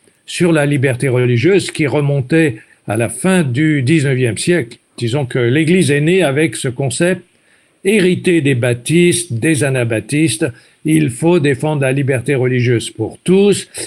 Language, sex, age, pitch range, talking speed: French, male, 60-79, 135-175 Hz, 145 wpm